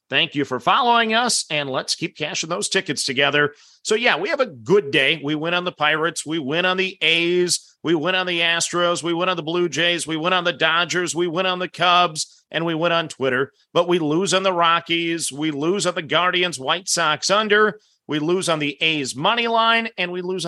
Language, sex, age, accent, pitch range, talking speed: English, male, 40-59, American, 155-195 Hz, 230 wpm